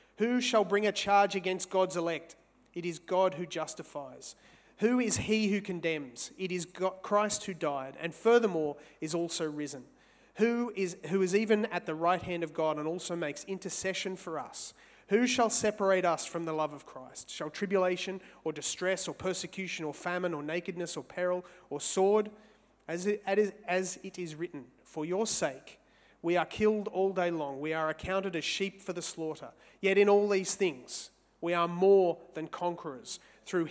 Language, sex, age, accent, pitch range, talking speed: English, male, 30-49, Australian, 160-195 Hz, 185 wpm